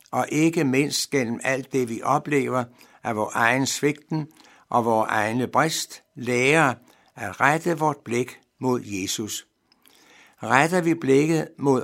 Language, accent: Danish, native